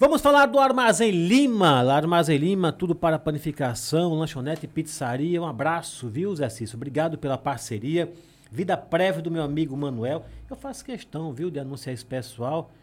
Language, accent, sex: Portuguese, Brazilian, male